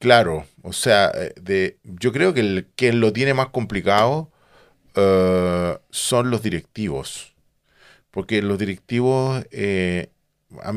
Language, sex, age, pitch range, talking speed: Spanish, male, 40-59, 95-125 Hz, 125 wpm